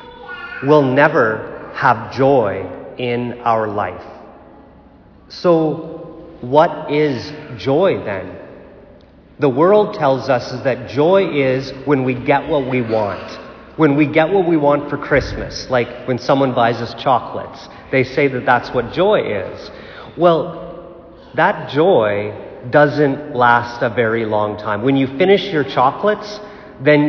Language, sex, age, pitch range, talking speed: English, male, 40-59, 120-160 Hz, 135 wpm